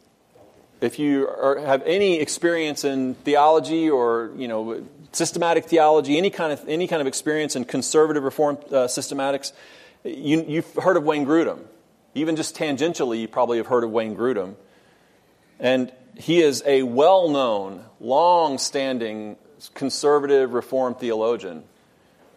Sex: male